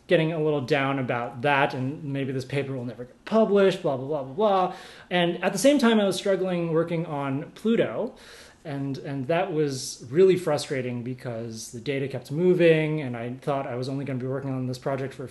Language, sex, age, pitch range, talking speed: English, male, 30-49, 130-170 Hz, 215 wpm